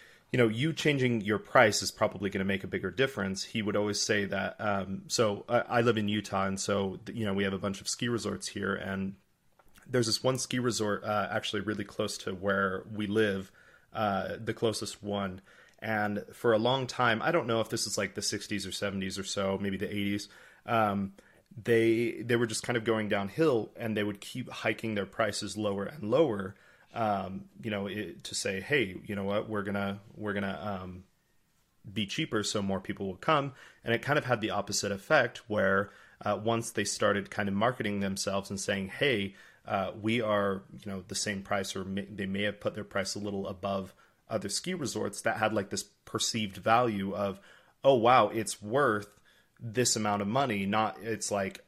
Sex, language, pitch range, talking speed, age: male, English, 100-110 Hz, 205 wpm, 30-49